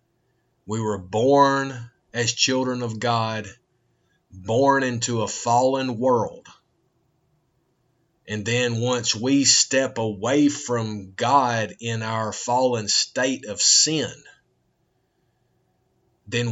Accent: American